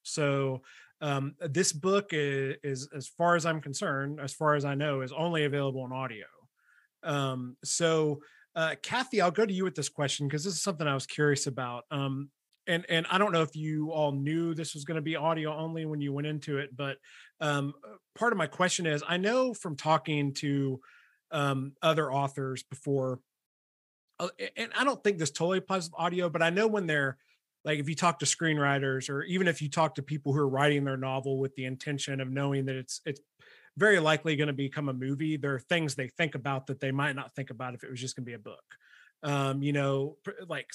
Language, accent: English, American